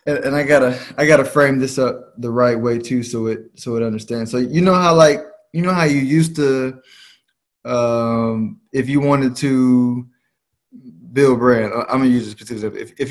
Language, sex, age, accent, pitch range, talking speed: English, male, 20-39, American, 110-130 Hz, 195 wpm